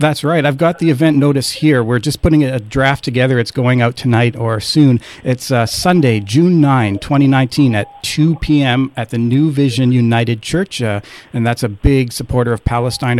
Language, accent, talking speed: English, American, 195 wpm